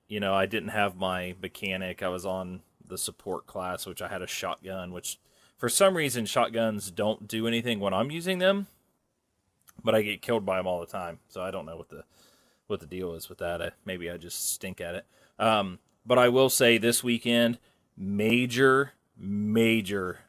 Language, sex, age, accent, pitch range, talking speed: English, male, 30-49, American, 100-120 Hz, 200 wpm